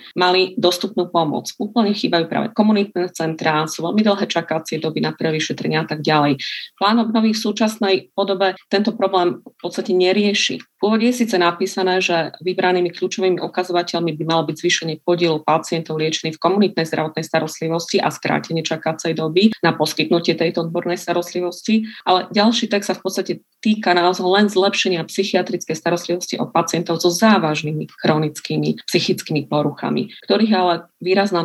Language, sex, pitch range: Slovak, female, 165-195 Hz